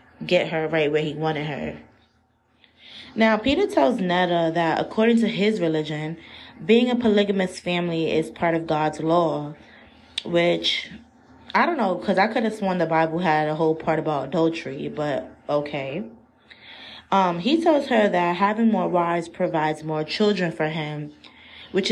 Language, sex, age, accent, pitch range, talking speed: English, female, 20-39, American, 160-190 Hz, 160 wpm